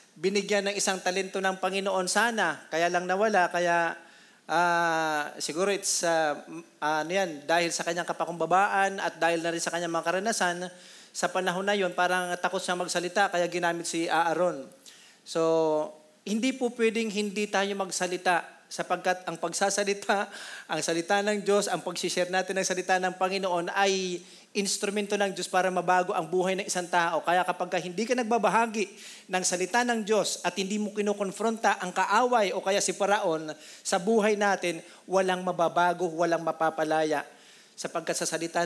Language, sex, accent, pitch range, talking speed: Filipino, male, native, 170-200 Hz, 160 wpm